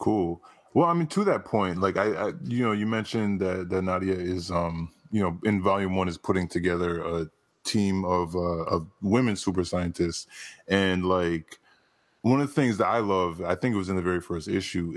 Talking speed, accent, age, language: 215 wpm, American, 20-39, English